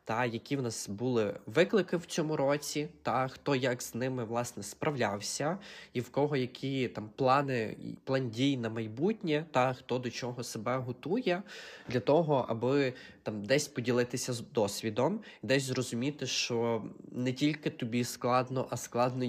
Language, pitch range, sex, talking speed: Ukrainian, 110-135 Hz, male, 150 wpm